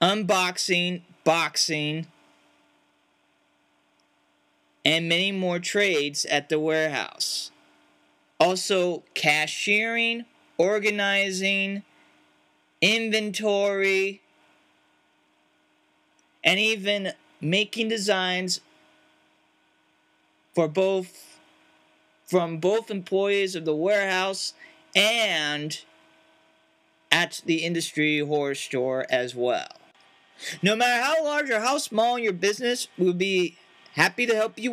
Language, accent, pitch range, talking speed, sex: English, American, 145-220 Hz, 85 wpm, male